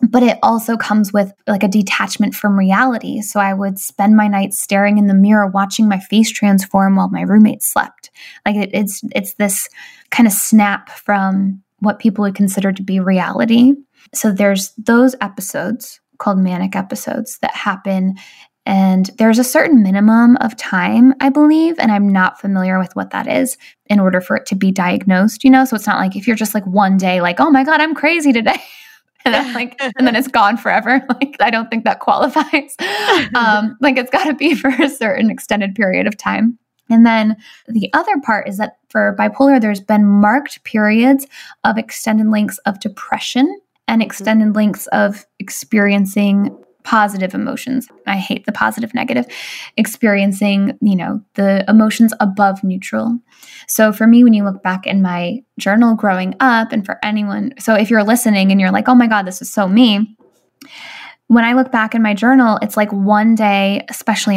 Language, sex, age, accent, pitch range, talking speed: English, female, 10-29, American, 200-245 Hz, 185 wpm